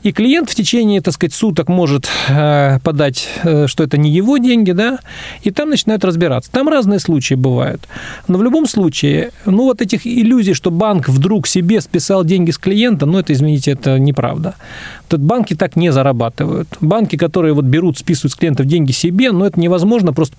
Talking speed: 180 wpm